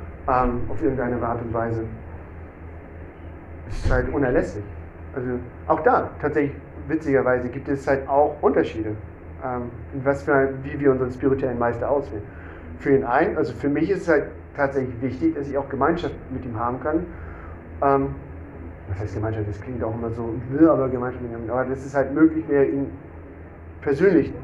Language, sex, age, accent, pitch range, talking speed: German, male, 40-59, German, 85-140 Hz, 170 wpm